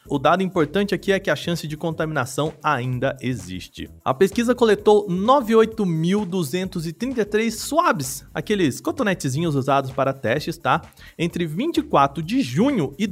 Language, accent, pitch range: Portuguese, Brazilian, 140-195 Hz